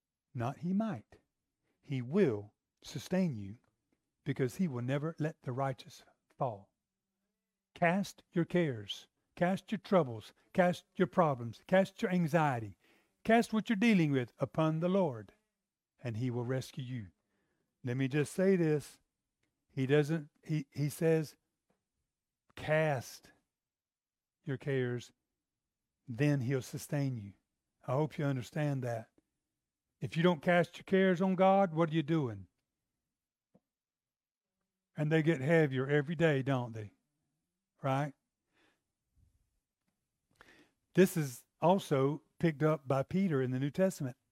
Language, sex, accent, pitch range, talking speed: English, male, American, 130-175 Hz, 125 wpm